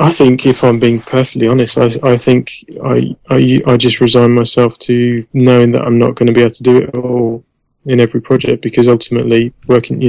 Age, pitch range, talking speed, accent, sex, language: 20-39, 120-130 Hz, 220 wpm, British, male, English